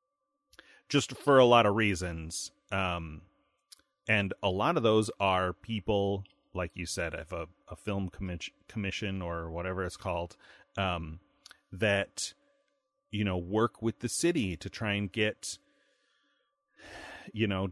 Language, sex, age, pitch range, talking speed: English, male, 30-49, 90-105 Hz, 140 wpm